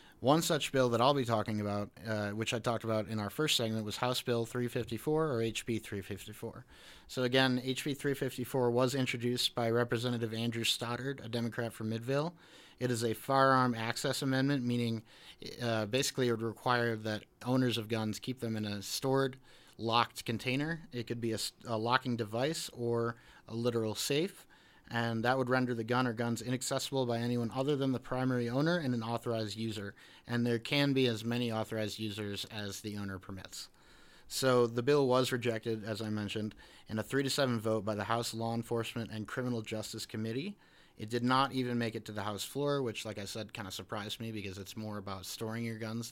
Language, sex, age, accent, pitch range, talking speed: English, male, 30-49, American, 110-130 Hz, 195 wpm